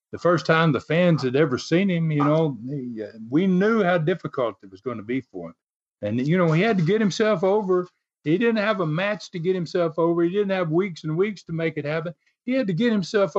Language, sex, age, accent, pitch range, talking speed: English, male, 50-69, American, 135-190 Hz, 250 wpm